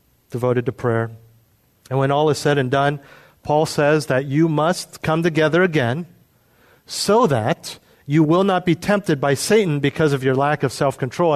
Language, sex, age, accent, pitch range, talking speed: English, male, 40-59, American, 120-160 Hz, 175 wpm